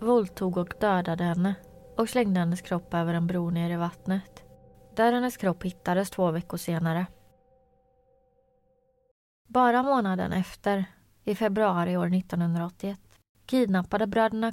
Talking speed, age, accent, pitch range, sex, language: 125 wpm, 20-39, native, 170-205 Hz, female, Swedish